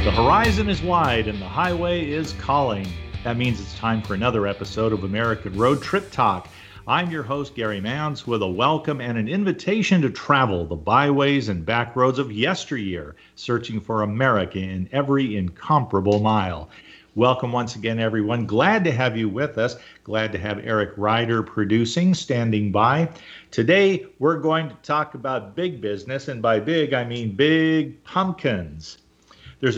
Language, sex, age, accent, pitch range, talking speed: English, male, 50-69, American, 105-155 Hz, 165 wpm